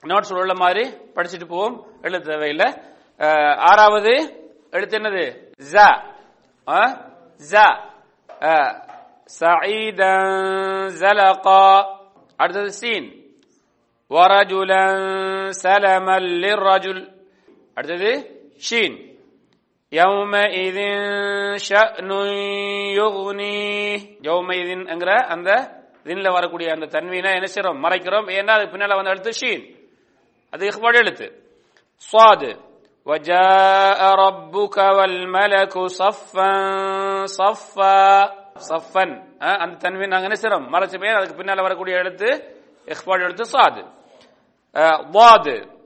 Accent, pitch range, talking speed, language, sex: Indian, 185-205 Hz, 75 wpm, English, male